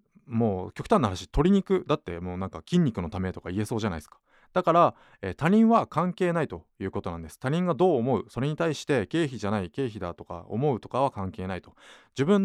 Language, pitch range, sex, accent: Japanese, 95-165 Hz, male, native